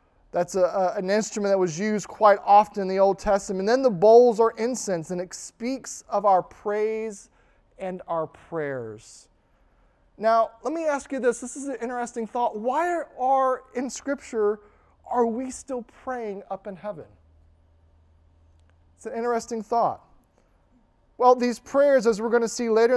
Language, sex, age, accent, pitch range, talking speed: English, male, 20-39, American, 185-230 Hz, 170 wpm